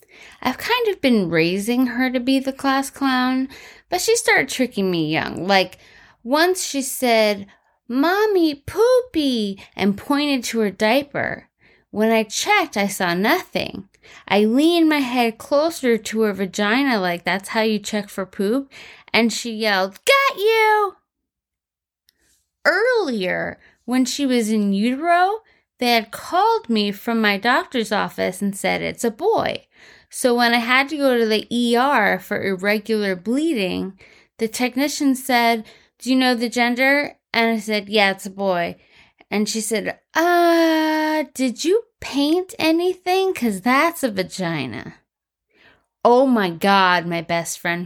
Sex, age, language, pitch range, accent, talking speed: female, 20-39, English, 200-280 Hz, American, 150 wpm